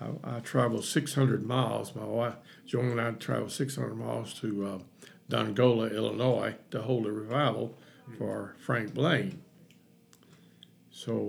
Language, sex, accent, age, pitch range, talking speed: English, male, American, 50-69, 110-130 Hz, 135 wpm